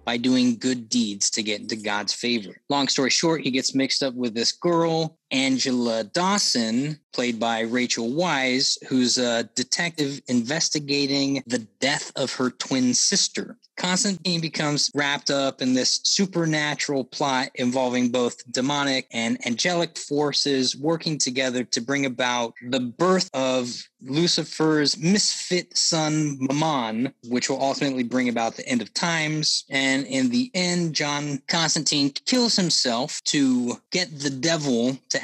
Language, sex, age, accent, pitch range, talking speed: English, male, 20-39, American, 125-160 Hz, 140 wpm